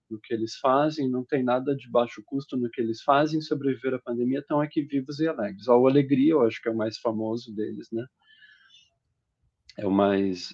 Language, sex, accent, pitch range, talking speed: Portuguese, male, Brazilian, 115-135 Hz, 205 wpm